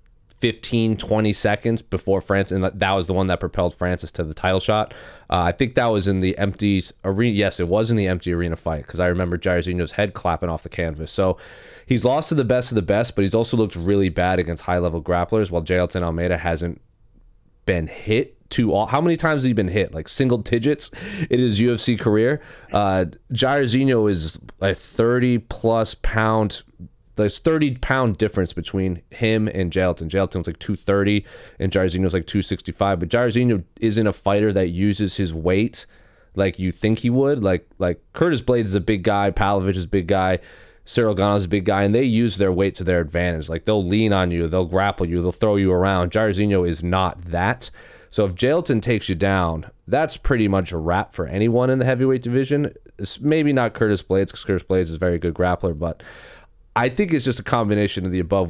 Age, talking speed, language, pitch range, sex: 30-49, 205 wpm, English, 90-110 Hz, male